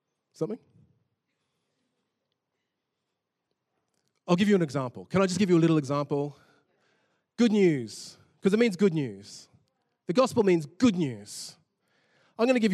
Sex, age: male, 20-39